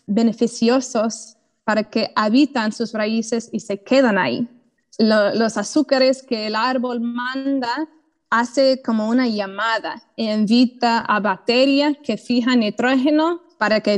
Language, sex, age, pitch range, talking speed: Spanish, female, 20-39, 215-260 Hz, 130 wpm